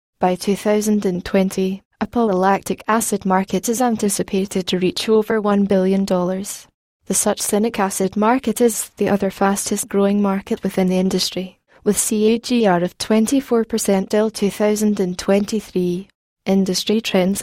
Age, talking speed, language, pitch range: 10-29, 115 wpm, English, 185-215 Hz